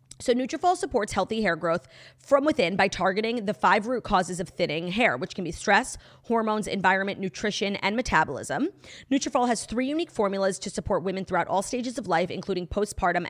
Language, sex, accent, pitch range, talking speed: English, female, American, 180-245 Hz, 185 wpm